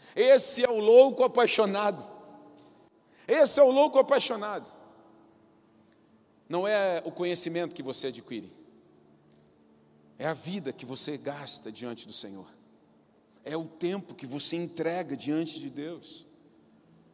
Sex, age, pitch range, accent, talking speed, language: male, 40-59, 155-220 Hz, Brazilian, 125 wpm, Portuguese